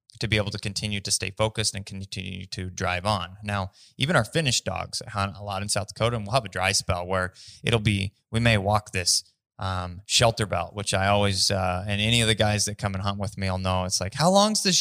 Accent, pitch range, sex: American, 100-120 Hz, male